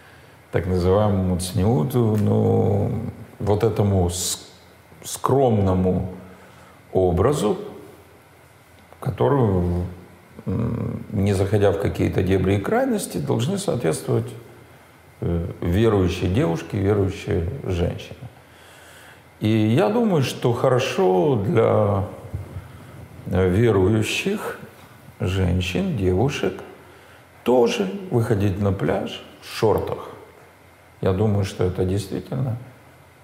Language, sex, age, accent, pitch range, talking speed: Russian, male, 50-69, native, 95-120 Hz, 75 wpm